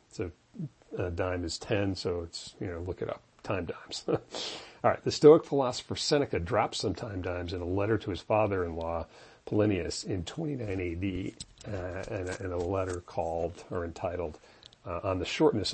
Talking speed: 170 wpm